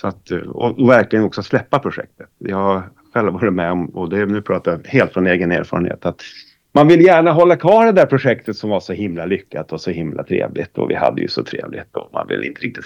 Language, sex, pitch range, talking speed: Swedish, male, 95-115 Hz, 240 wpm